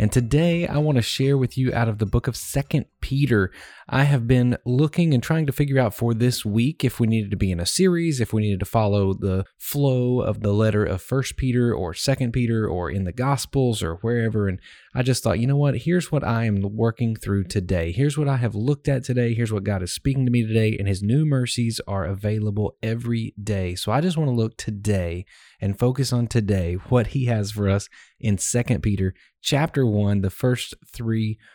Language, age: English, 20-39